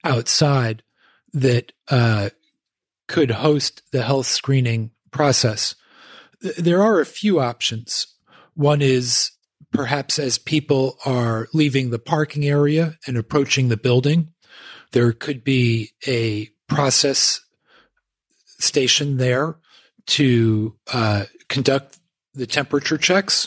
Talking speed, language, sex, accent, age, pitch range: 105 wpm, English, male, American, 40-59, 120-145 Hz